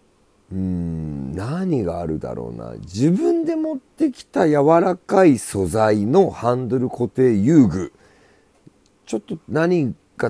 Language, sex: Japanese, male